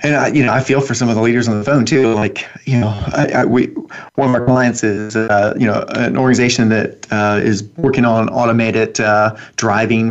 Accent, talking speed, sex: American, 210 wpm, male